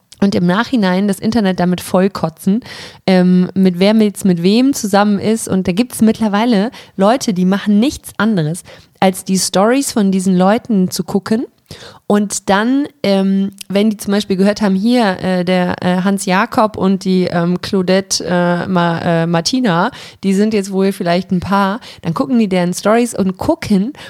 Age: 20-39